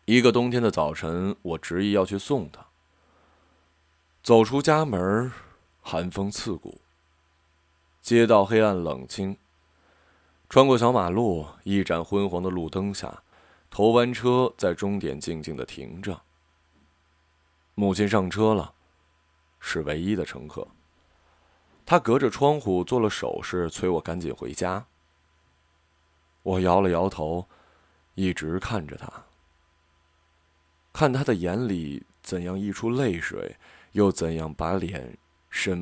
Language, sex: Chinese, male